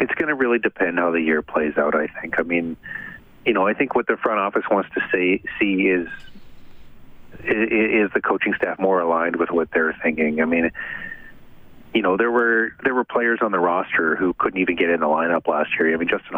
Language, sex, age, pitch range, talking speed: English, male, 40-59, 80-95 Hz, 225 wpm